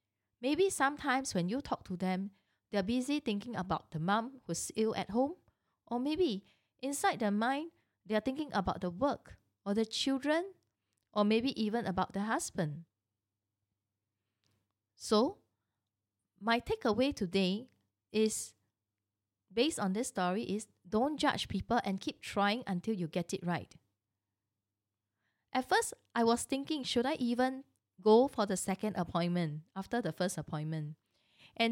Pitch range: 170-245 Hz